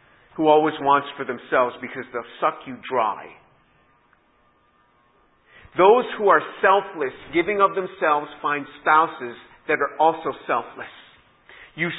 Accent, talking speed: American, 120 wpm